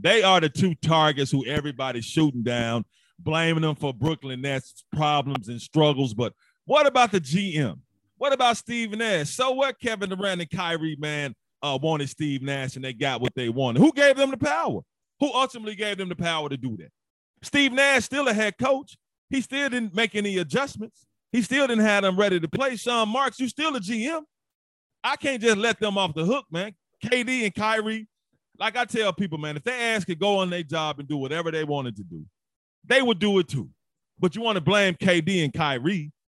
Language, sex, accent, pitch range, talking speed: English, male, American, 140-220 Hz, 210 wpm